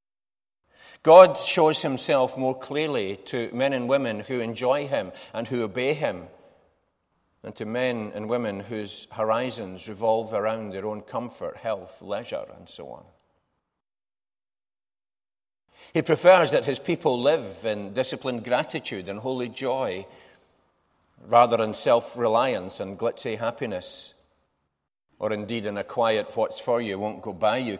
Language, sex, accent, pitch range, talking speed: English, male, British, 100-135 Hz, 125 wpm